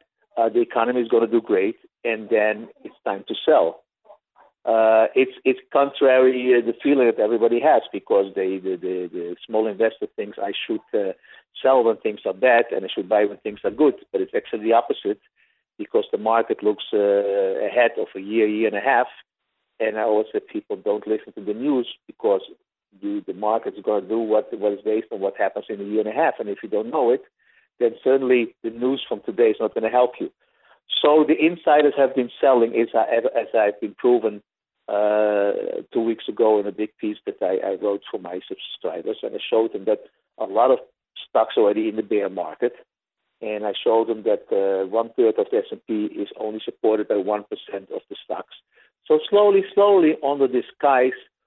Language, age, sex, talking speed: English, 50-69, male, 205 wpm